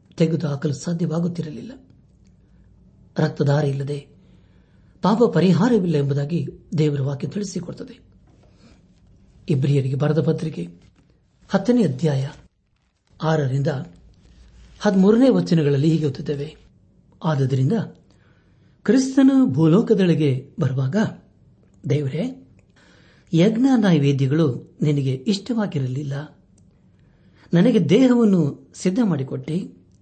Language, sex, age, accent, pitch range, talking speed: Kannada, male, 60-79, native, 140-185 Hz, 65 wpm